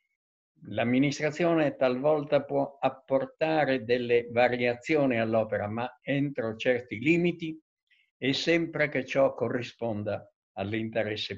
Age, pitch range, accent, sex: 50-69, 110-140 Hz, native, male